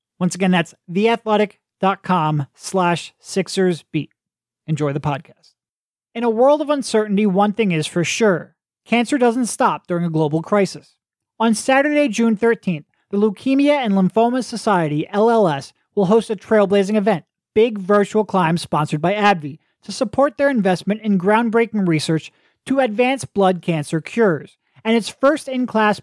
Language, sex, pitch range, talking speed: English, male, 180-230 Hz, 140 wpm